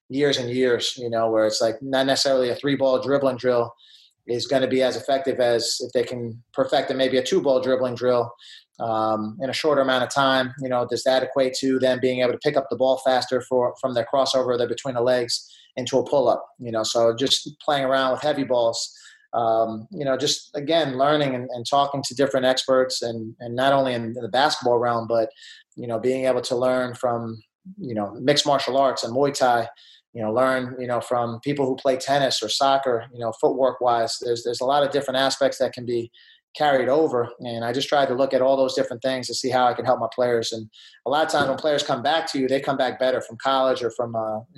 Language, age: English, 30-49